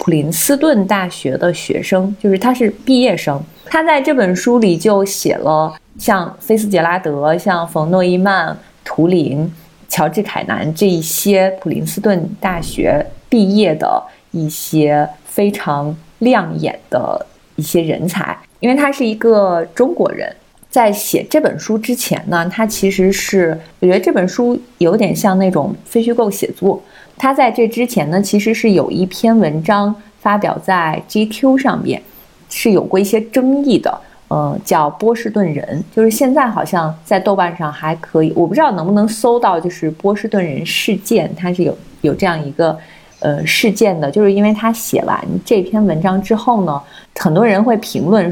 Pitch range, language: 170-225 Hz, Chinese